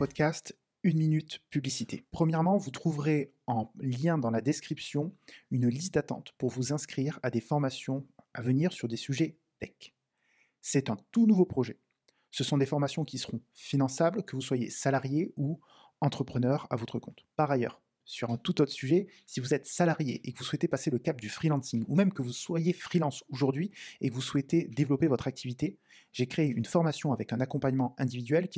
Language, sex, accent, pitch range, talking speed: French, male, French, 125-155 Hz, 190 wpm